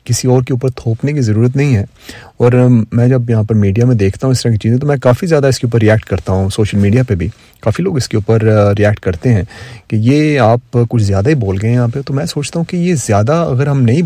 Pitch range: 110-130 Hz